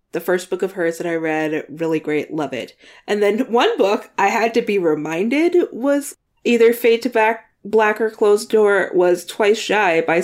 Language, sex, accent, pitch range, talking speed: English, female, American, 170-235 Hz, 200 wpm